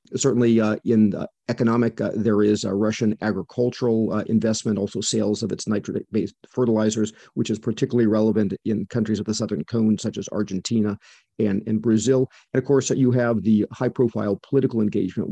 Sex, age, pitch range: male, 40-59, 105-120 Hz